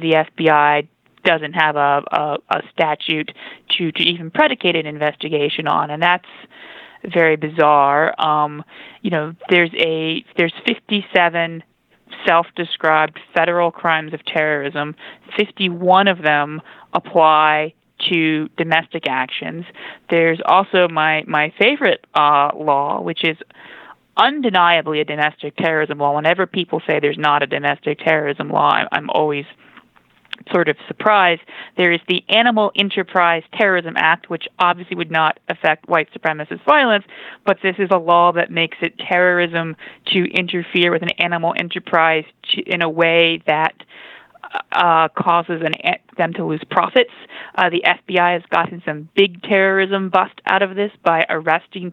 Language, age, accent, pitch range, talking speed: English, 20-39, American, 155-185 Hz, 140 wpm